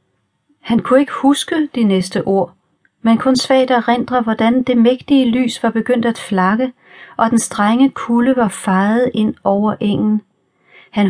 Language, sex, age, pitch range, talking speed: Danish, female, 40-59, 195-240 Hz, 155 wpm